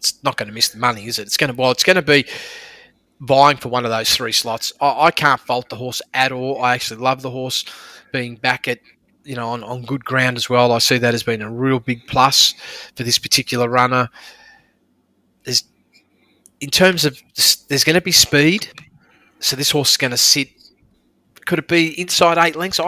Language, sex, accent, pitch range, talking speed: English, male, Australian, 120-145 Hz, 210 wpm